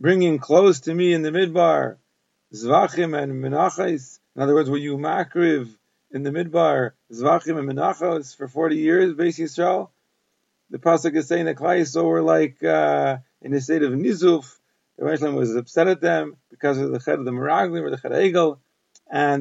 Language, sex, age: English, male, 40-59